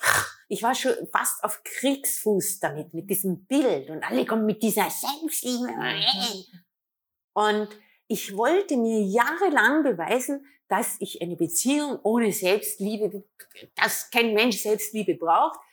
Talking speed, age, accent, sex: 125 wpm, 50-69, Austrian, female